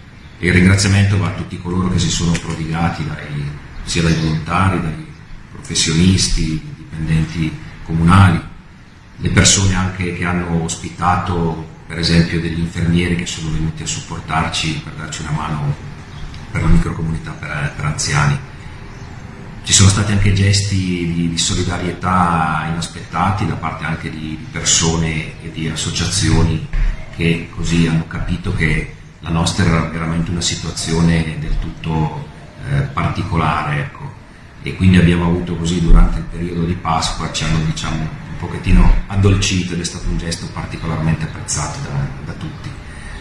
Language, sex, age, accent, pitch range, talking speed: Italian, male, 40-59, native, 80-90 Hz, 140 wpm